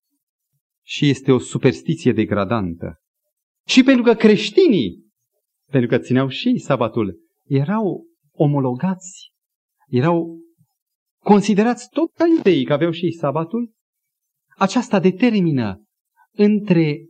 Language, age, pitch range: Romanian, 40-59, 130-215 Hz